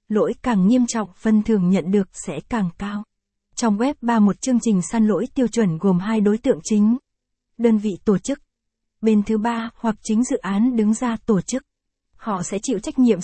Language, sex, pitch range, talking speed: Vietnamese, female, 200-240 Hz, 210 wpm